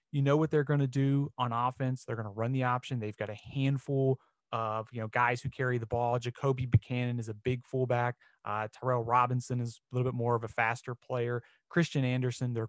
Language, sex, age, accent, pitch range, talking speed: English, male, 30-49, American, 120-145 Hz, 225 wpm